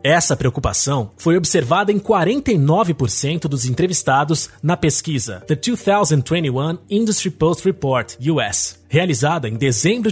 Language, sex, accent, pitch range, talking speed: Portuguese, male, Brazilian, 130-200 Hz, 115 wpm